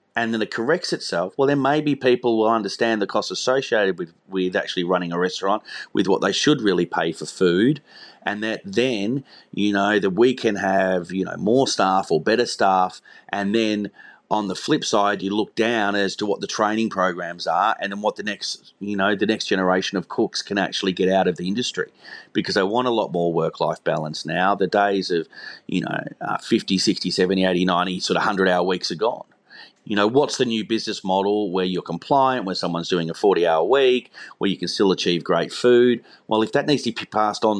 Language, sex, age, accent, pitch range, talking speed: English, male, 30-49, Australian, 95-115 Hz, 220 wpm